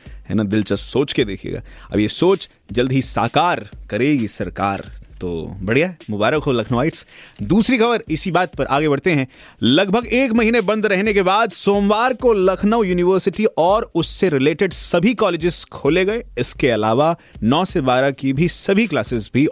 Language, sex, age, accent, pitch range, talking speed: Hindi, male, 30-49, native, 120-185 Hz, 170 wpm